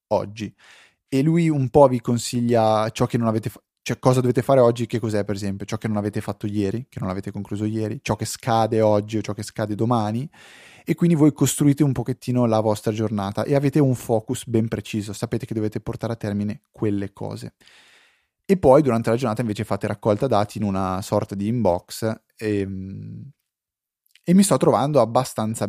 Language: Italian